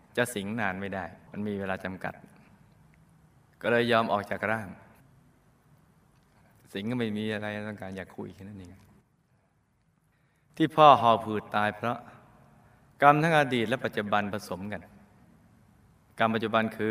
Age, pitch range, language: 20-39, 105-140 Hz, Thai